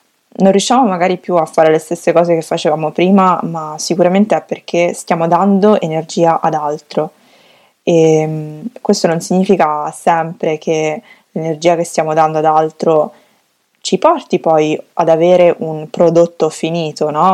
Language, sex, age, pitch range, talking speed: Italian, female, 20-39, 155-180 Hz, 145 wpm